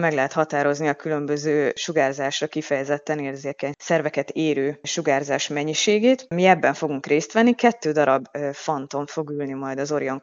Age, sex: 20-39, female